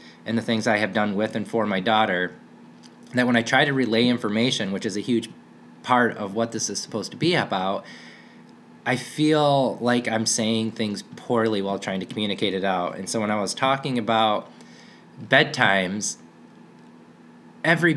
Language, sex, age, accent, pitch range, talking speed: English, male, 20-39, American, 100-125 Hz, 175 wpm